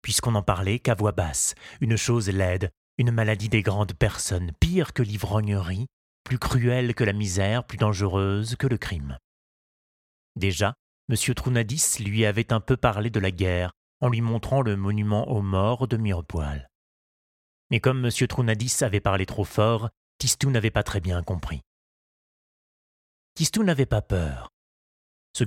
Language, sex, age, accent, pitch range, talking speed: French, male, 30-49, French, 95-125 Hz, 155 wpm